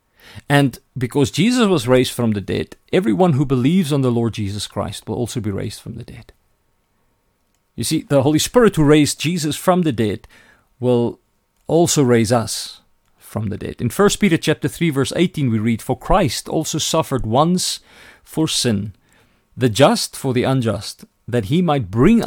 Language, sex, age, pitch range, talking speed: English, male, 40-59, 110-150 Hz, 180 wpm